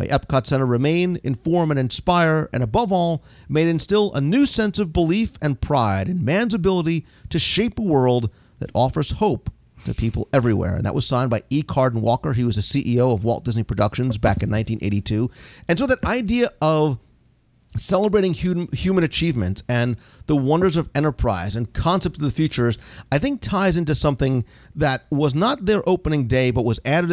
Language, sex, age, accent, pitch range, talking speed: English, male, 40-59, American, 120-170 Hz, 185 wpm